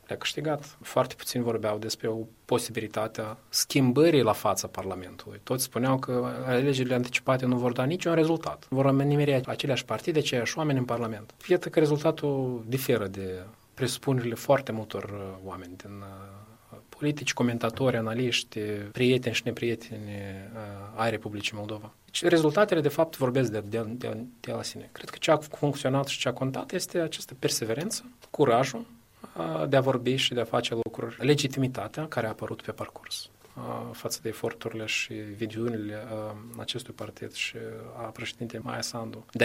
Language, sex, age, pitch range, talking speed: Romanian, male, 20-39, 110-130 Hz, 155 wpm